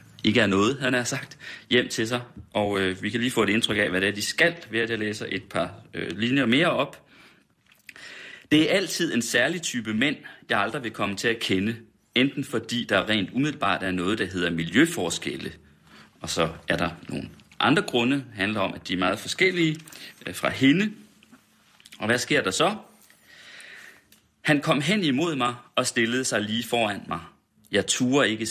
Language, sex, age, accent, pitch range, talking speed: Danish, male, 30-49, native, 100-125 Hz, 190 wpm